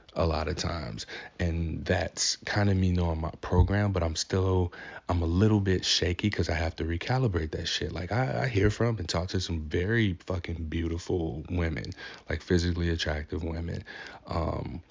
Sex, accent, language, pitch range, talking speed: male, American, English, 80-95 Hz, 180 wpm